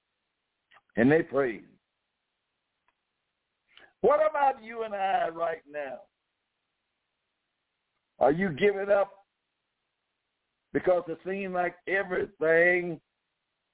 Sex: male